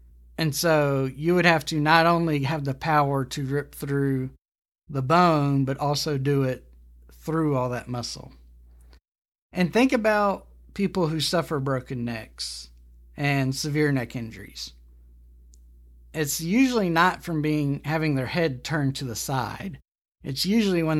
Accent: American